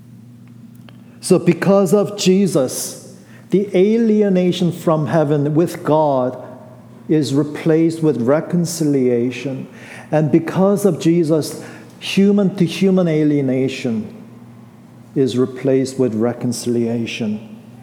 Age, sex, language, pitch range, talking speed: 50-69, male, English, 120-165 Hz, 90 wpm